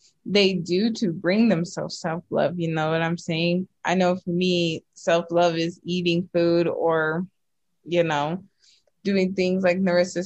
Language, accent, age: English, American, 20-39